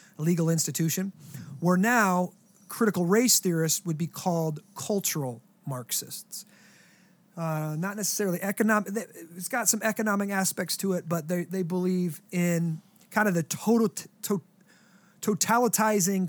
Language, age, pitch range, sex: English, 30-49, 165-200 Hz, male